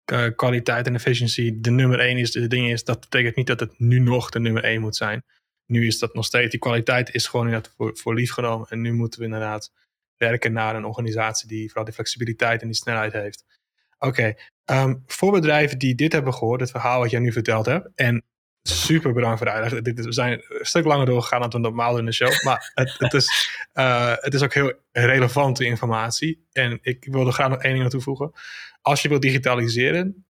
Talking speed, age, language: 215 wpm, 20-39, Dutch